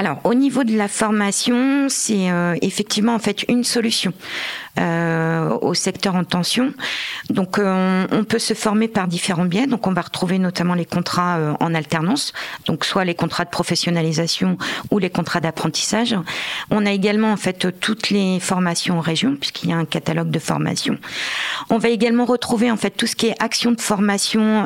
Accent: French